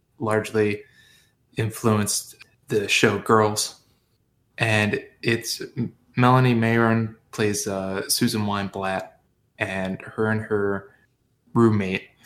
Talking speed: 90 wpm